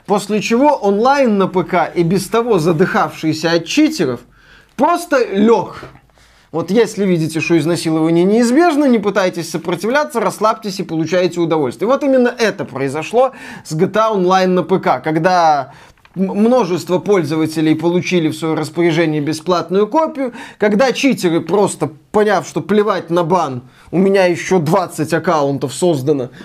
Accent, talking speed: native, 135 wpm